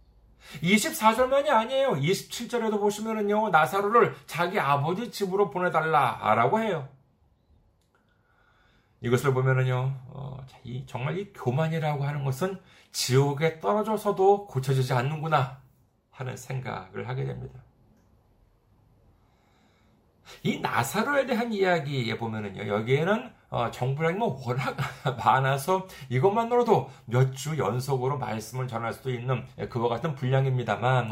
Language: Korean